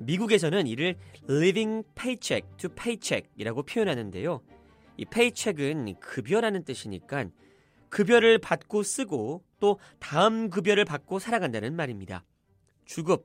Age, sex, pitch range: 30-49, male, 135-230 Hz